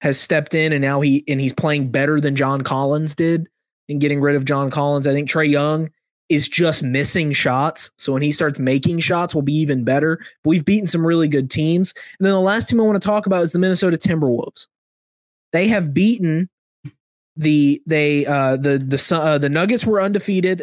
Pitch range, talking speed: 145-180 Hz, 210 wpm